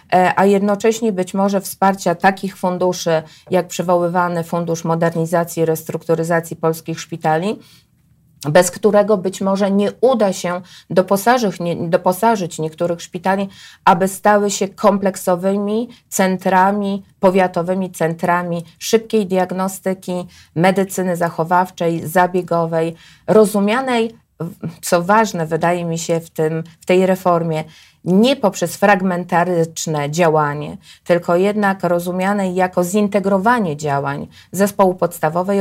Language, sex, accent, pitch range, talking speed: Polish, female, native, 165-195 Hz, 100 wpm